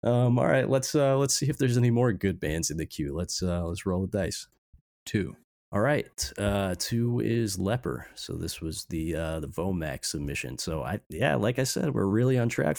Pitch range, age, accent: 85-105 Hz, 30-49, American